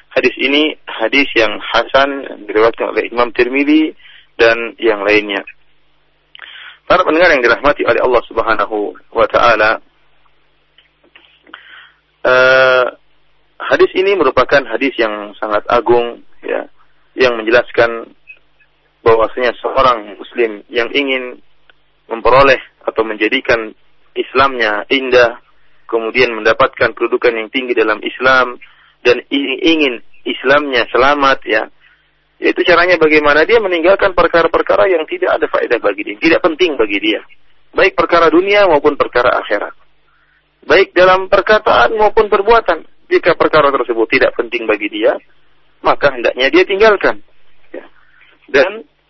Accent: Indonesian